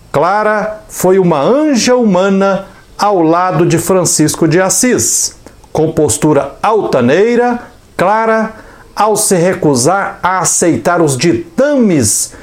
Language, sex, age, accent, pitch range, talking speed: Portuguese, male, 60-79, Brazilian, 150-215 Hz, 105 wpm